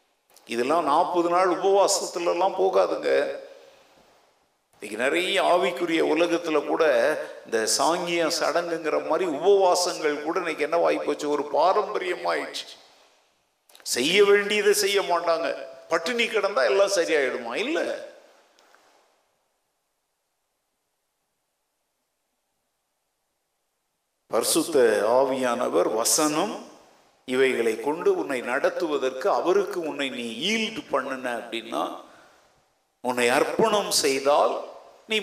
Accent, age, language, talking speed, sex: native, 50-69, Tamil, 75 wpm, male